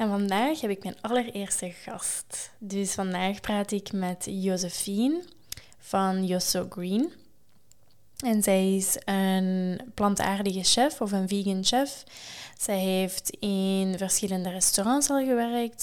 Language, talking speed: Dutch, 125 wpm